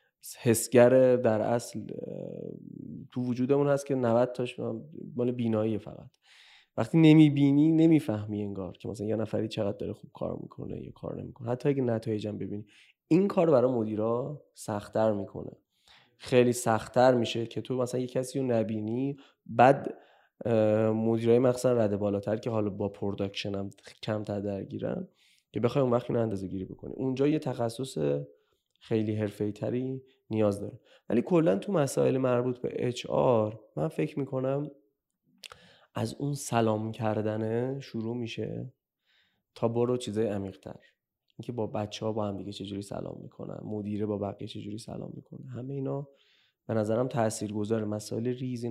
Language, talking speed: Persian, 150 wpm